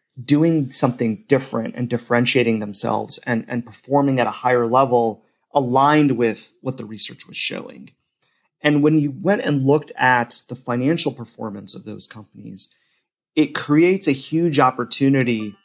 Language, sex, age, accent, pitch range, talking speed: English, male, 30-49, American, 115-140 Hz, 145 wpm